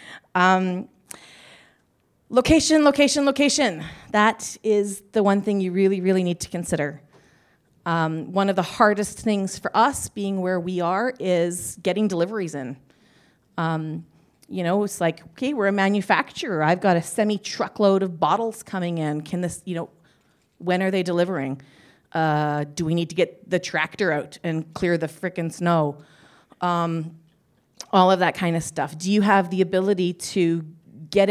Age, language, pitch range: 30-49, English, 155-195 Hz